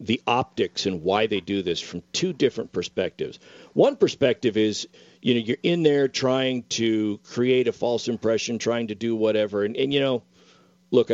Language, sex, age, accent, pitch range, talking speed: English, male, 50-69, American, 105-140 Hz, 185 wpm